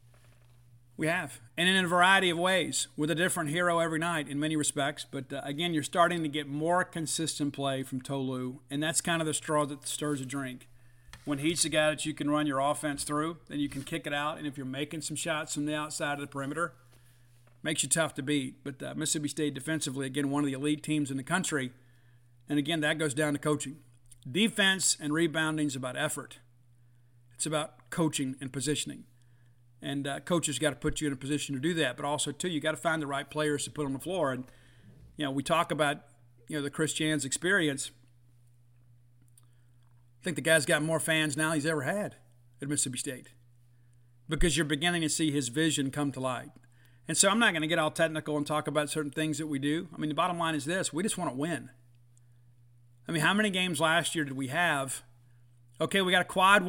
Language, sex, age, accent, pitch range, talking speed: English, male, 50-69, American, 125-160 Hz, 225 wpm